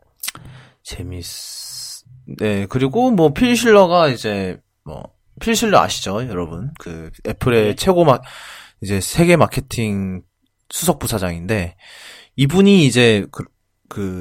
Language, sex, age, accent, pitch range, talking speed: English, male, 20-39, Korean, 95-135 Hz, 95 wpm